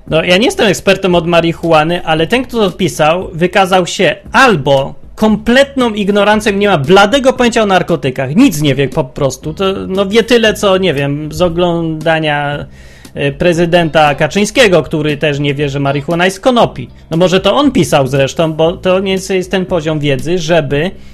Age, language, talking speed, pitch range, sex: 30-49, Polish, 175 wpm, 155-200 Hz, male